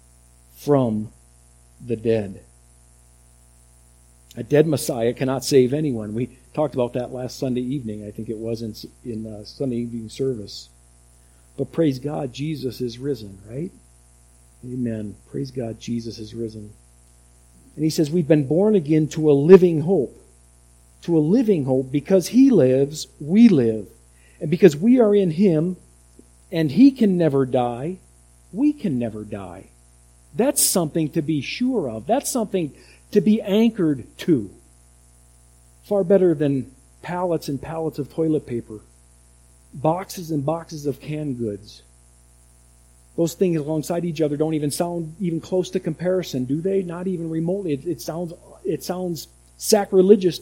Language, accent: English, American